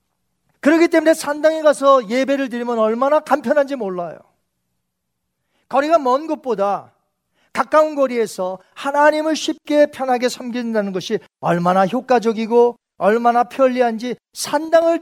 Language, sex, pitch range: Korean, male, 215-305 Hz